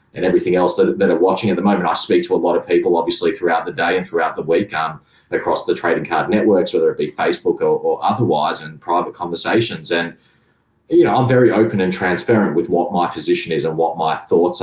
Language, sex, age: English, male, 30-49